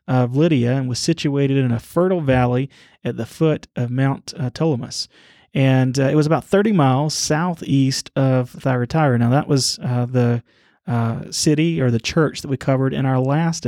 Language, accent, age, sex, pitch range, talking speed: English, American, 30-49, male, 125-160 Hz, 185 wpm